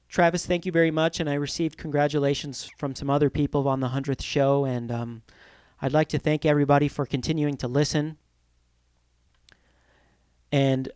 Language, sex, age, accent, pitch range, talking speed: English, male, 40-59, American, 135-160 Hz, 160 wpm